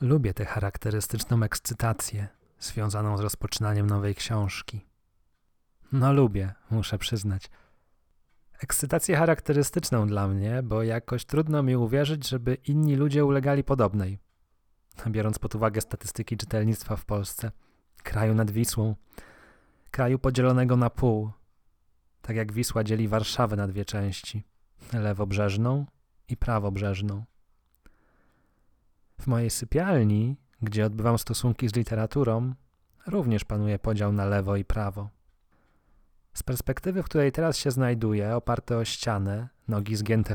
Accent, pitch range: native, 100-120 Hz